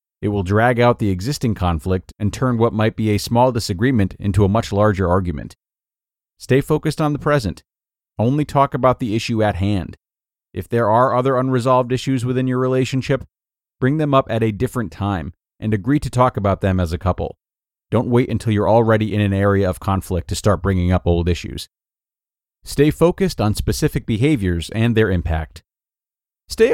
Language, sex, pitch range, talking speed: English, male, 95-130 Hz, 185 wpm